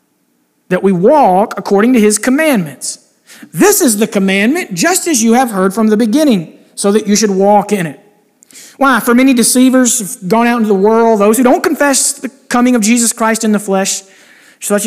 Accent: American